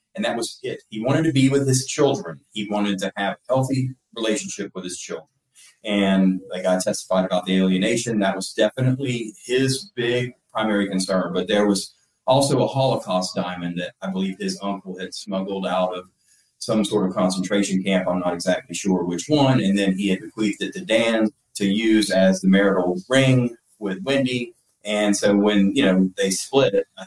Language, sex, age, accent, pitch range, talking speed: English, male, 30-49, American, 95-125 Hz, 195 wpm